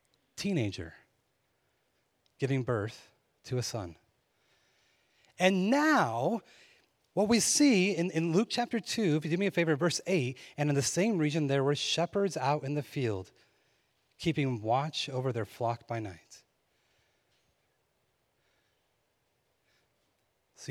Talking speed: 130 wpm